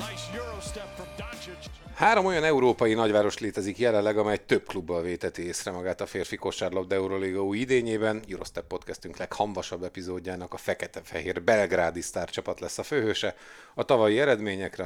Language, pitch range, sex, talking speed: Hungarian, 95-125 Hz, male, 125 wpm